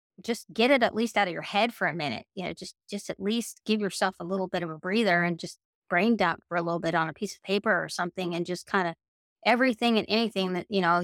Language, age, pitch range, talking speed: English, 20-39, 175-205 Hz, 275 wpm